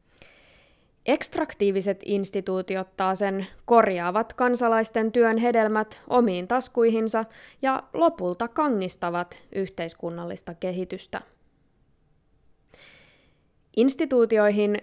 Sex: female